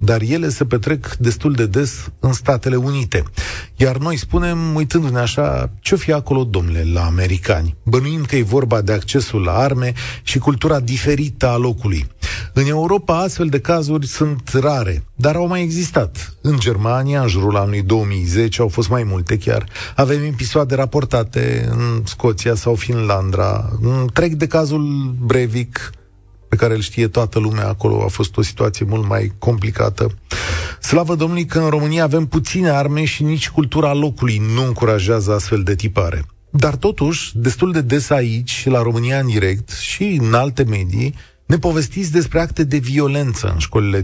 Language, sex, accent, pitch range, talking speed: Romanian, male, native, 105-140 Hz, 165 wpm